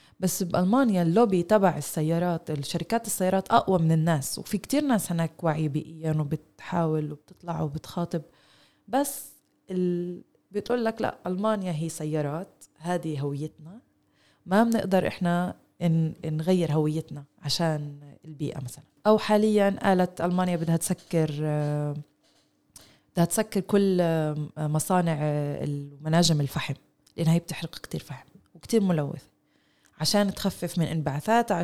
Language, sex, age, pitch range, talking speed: Arabic, female, 20-39, 160-200 Hz, 115 wpm